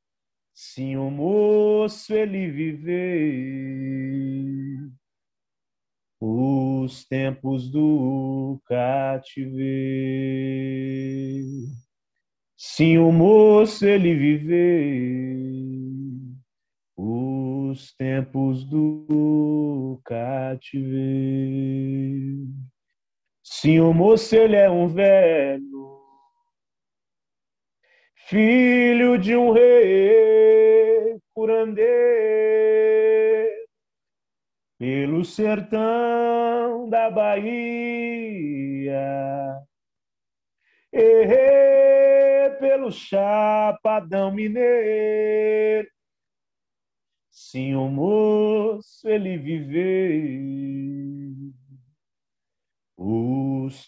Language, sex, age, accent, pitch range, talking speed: Portuguese, male, 40-59, Brazilian, 135-215 Hz, 50 wpm